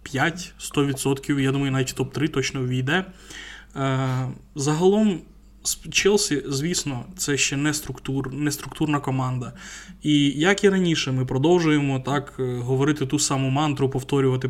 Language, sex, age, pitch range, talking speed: Ukrainian, male, 20-39, 135-170 Hz, 130 wpm